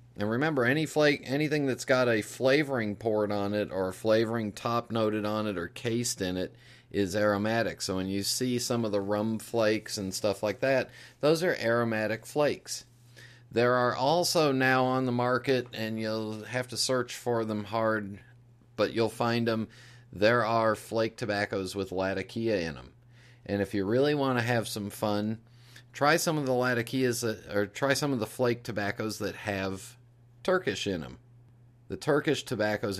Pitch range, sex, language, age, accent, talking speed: 105-125 Hz, male, English, 40-59, American, 180 wpm